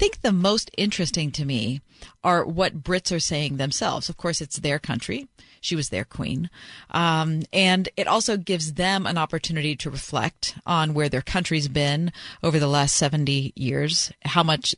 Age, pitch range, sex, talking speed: 40-59, 145-175 Hz, female, 180 wpm